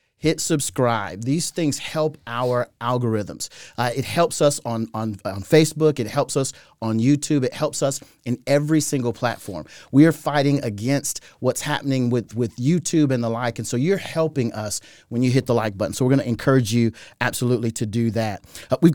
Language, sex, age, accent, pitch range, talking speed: English, male, 40-59, American, 120-145 Hz, 195 wpm